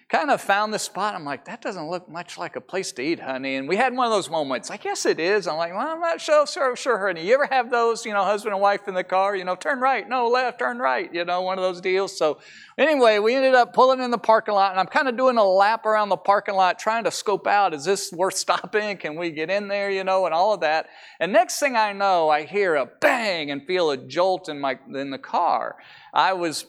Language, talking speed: English, 275 wpm